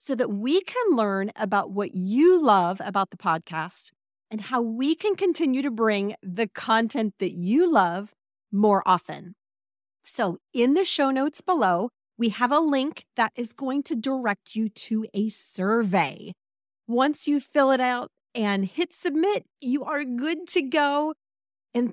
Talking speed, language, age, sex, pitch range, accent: 160 wpm, English, 30-49, female, 200-275 Hz, American